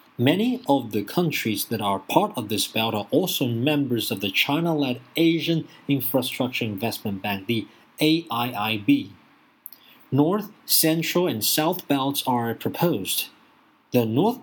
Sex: male